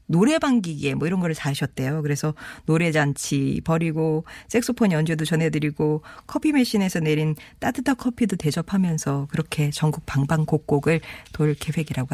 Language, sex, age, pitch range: Korean, female, 40-59, 150-210 Hz